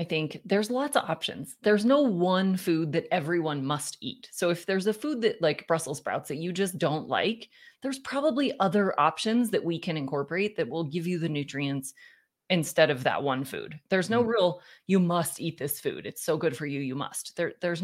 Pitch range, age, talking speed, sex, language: 150-210 Hz, 30-49, 210 wpm, female, English